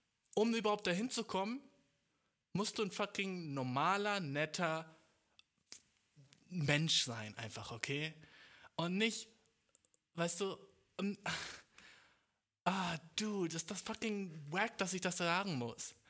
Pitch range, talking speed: 130-195 Hz, 120 wpm